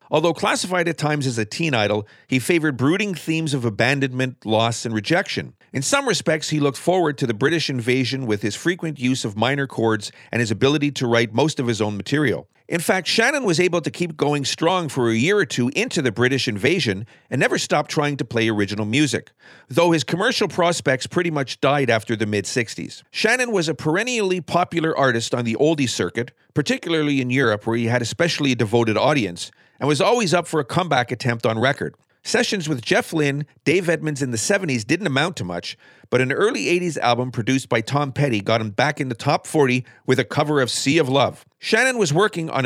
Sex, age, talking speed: male, 40-59, 210 wpm